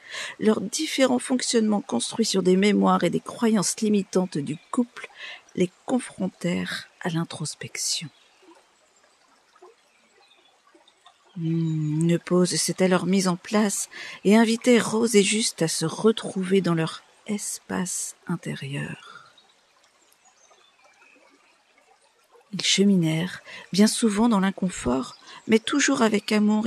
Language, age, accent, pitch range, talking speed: French, 50-69, French, 170-220 Hz, 105 wpm